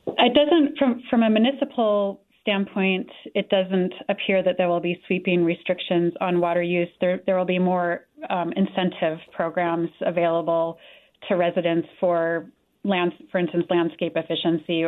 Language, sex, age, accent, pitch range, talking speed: English, female, 30-49, American, 175-200 Hz, 145 wpm